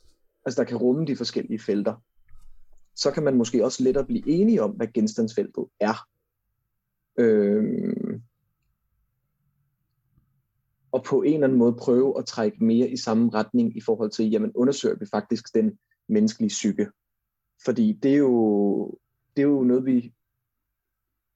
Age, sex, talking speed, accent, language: 30-49, male, 145 wpm, native, Danish